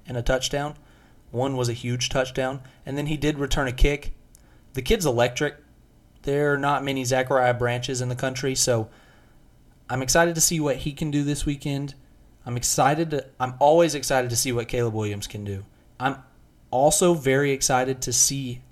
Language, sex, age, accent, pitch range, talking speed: English, male, 30-49, American, 115-140 Hz, 175 wpm